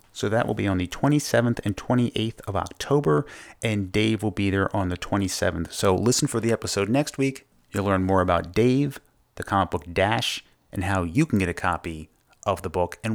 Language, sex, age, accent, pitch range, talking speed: English, male, 30-49, American, 95-120 Hz, 210 wpm